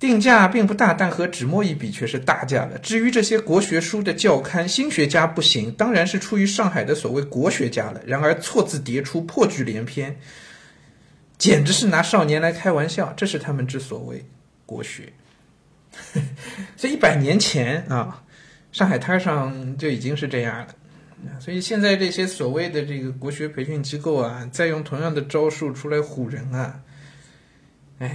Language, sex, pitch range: Chinese, male, 125-160 Hz